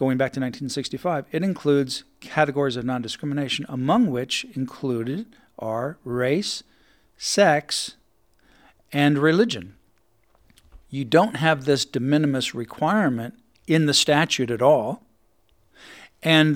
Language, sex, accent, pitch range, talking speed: English, male, American, 135-170 Hz, 110 wpm